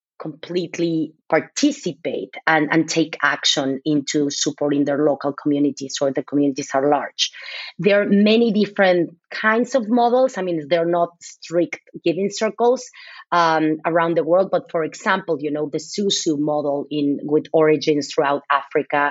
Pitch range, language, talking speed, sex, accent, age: 150-185 Hz, English, 150 wpm, female, Spanish, 30-49